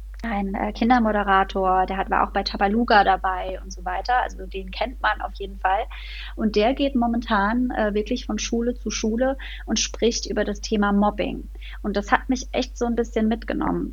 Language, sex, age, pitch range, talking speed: German, female, 30-49, 195-235 Hz, 195 wpm